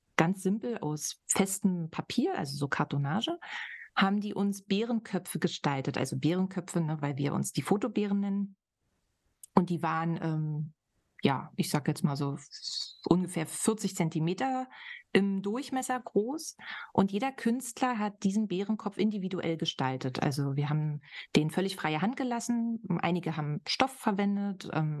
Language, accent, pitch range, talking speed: German, German, 160-215 Hz, 140 wpm